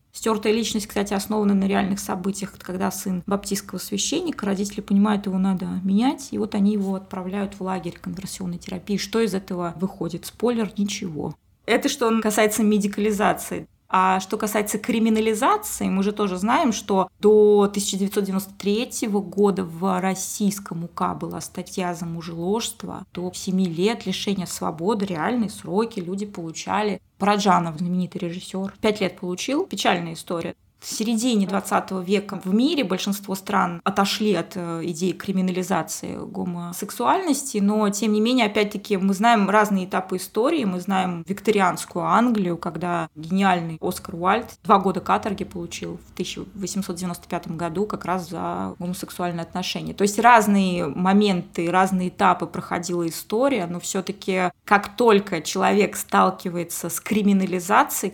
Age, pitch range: 20-39, 180-210 Hz